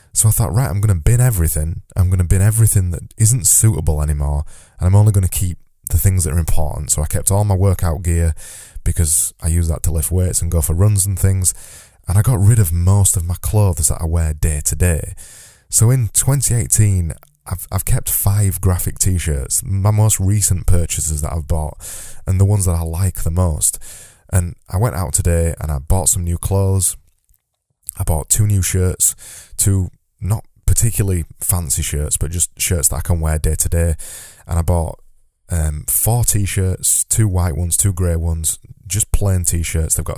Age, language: 20-39, English